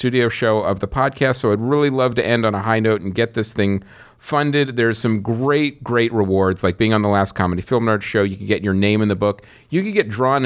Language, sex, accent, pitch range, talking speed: English, male, American, 100-125 Hz, 265 wpm